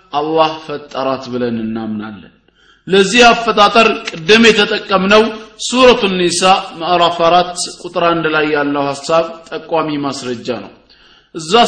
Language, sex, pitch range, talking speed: Amharic, male, 165-210 Hz, 110 wpm